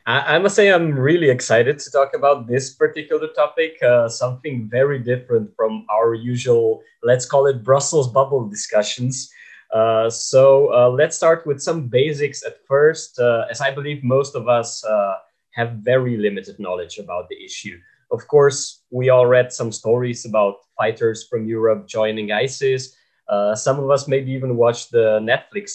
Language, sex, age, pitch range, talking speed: Czech, male, 20-39, 115-150 Hz, 170 wpm